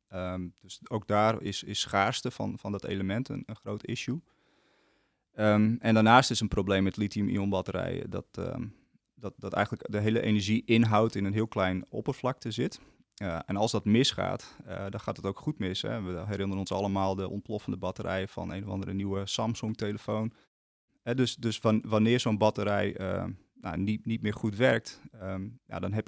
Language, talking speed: English, 190 wpm